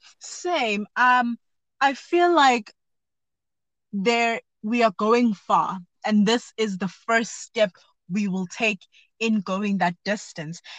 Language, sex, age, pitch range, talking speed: English, female, 20-39, 195-235 Hz, 130 wpm